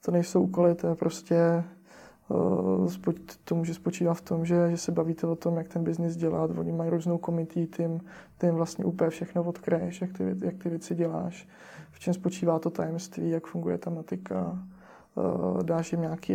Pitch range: 160-180 Hz